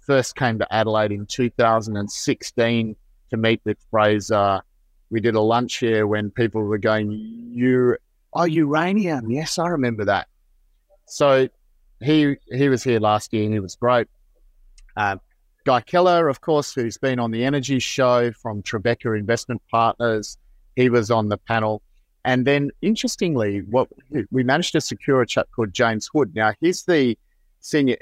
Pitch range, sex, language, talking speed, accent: 105-130 Hz, male, English, 155 wpm, Australian